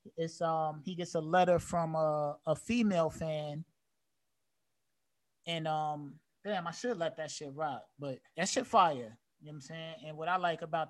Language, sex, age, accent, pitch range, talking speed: English, male, 20-39, American, 145-170 Hz, 185 wpm